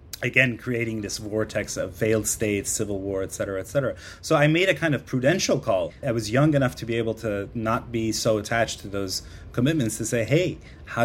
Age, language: 30-49, English